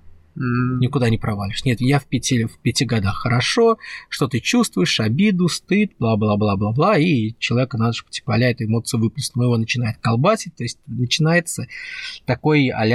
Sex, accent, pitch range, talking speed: male, native, 115-160 Hz, 160 wpm